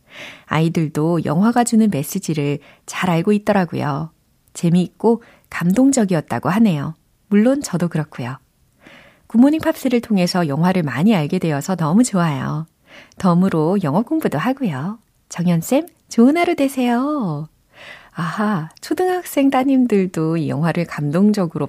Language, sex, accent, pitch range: Korean, female, native, 155-210 Hz